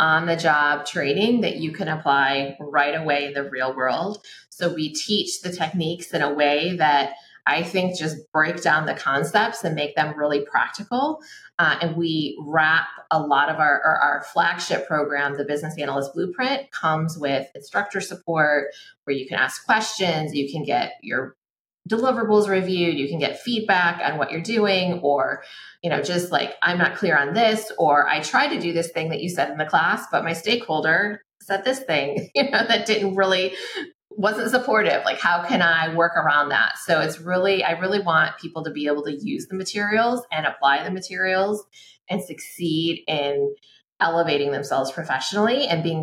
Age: 20-39